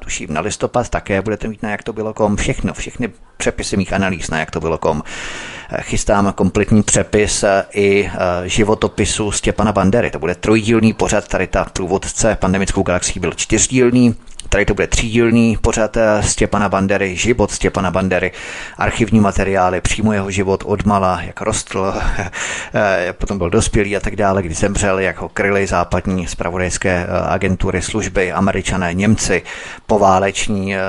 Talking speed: 145 wpm